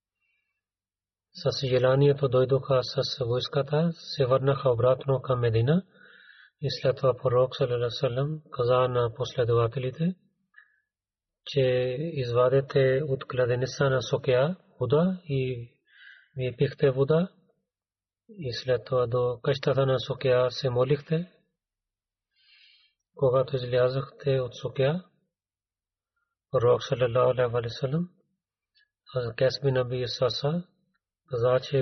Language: Bulgarian